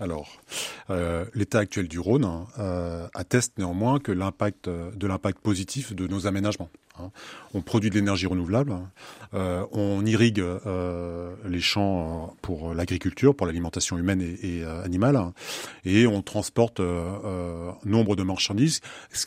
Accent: French